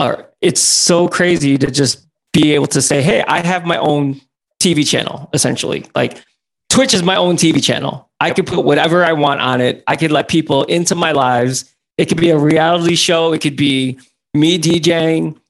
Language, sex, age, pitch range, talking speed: English, male, 20-39, 135-170 Hz, 195 wpm